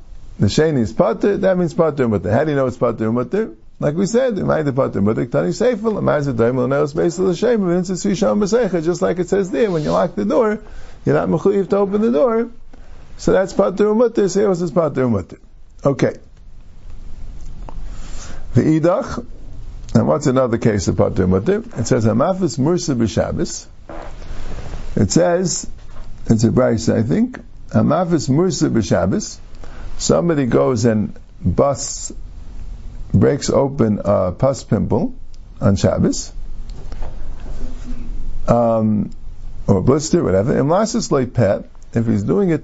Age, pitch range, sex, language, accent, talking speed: 50-69, 110-180 Hz, male, English, American, 120 wpm